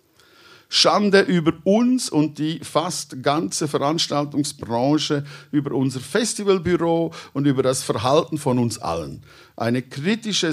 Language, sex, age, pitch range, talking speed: German, male, 50-69, 115-155 Hz, 115 wpm